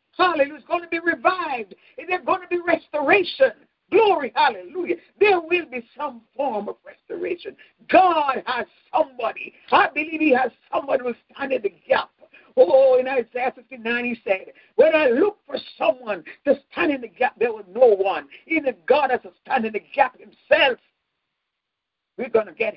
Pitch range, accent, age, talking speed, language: 235-350 Hz, American, 50-69, 180 wpm, English